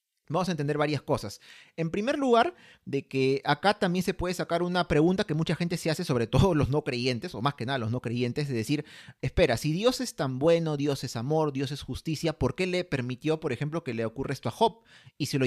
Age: 30-49